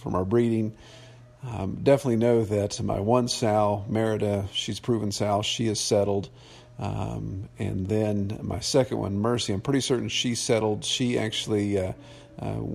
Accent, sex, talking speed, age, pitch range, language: American, male, 155 wpm, 50-69, 105-130 Hz, English